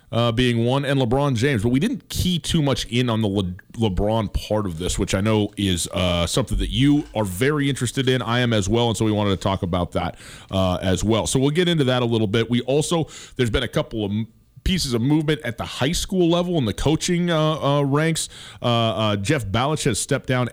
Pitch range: 105-130 Hz